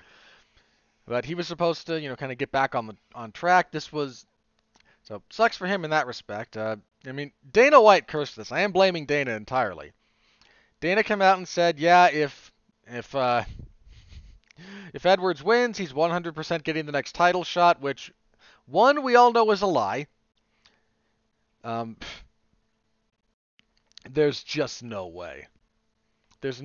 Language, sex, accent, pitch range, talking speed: English, male, American, 120-175 Hz, 155 wpm